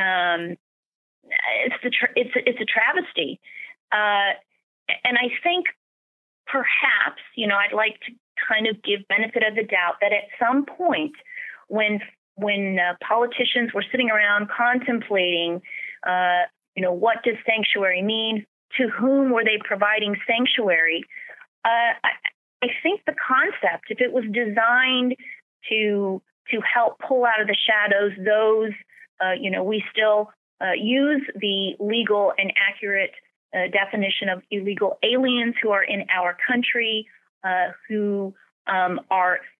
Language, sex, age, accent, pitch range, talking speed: English, female, 30-49, American, 195-245 Hz, 145 wpm